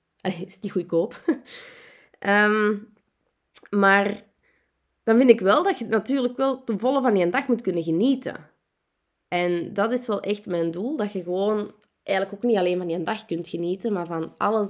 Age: 20-39